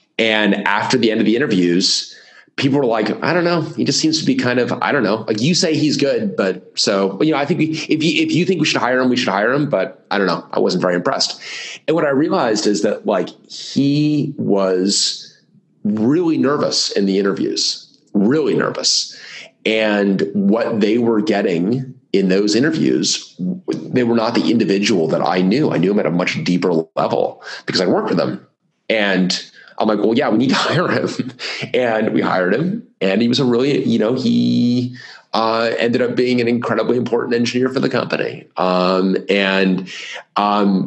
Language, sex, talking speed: English, male, 200 wpm